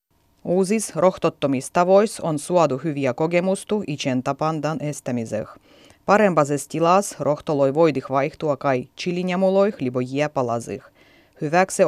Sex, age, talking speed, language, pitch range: female, 30-49, 95 wpm, Finnish, 135-185 Hz